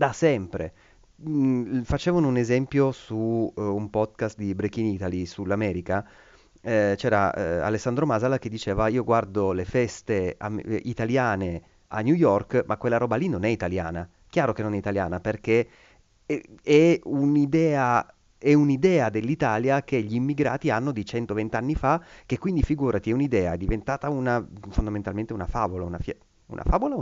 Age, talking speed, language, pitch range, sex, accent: 30-49, 160 wpm, Italian, 100-135 Hz, male, native